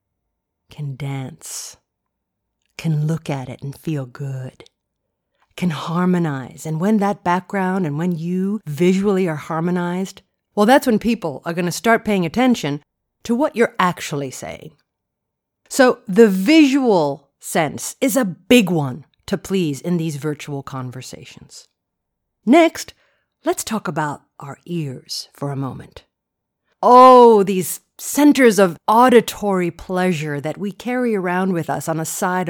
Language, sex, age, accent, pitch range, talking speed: English, female, 50-69, American, 155-230 Hz, 135 wpm